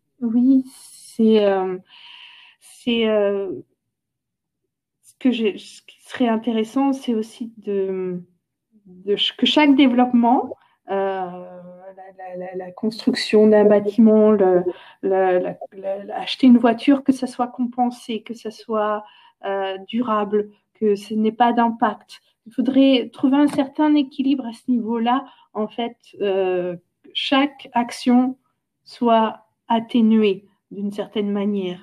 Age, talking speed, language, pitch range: 50-69, 130 wpm, French, 190-245 Hz